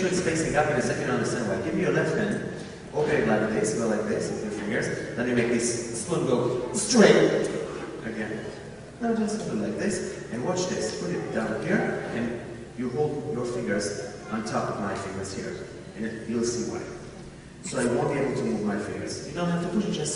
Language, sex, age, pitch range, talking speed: English, male, 30-49, 120-180 Hz, 225 wpm